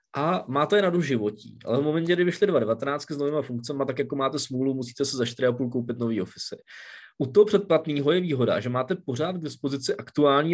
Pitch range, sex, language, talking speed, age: 115-140 Hz, male, Czech, 205 wpm, 20-39